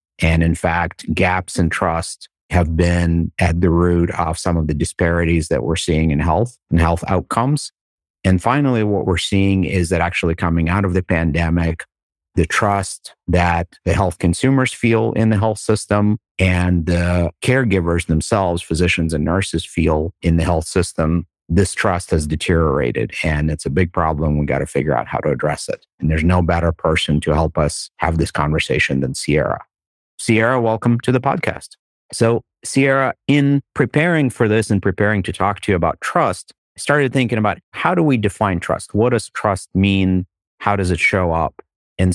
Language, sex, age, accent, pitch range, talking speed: English, male, 50-69, American, 85-105 Hz, 185 wpm